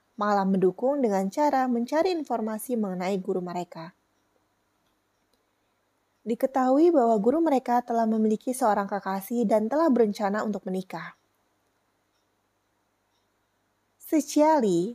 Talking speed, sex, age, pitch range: 90 wpm, female, 20-39, 195-260 Hz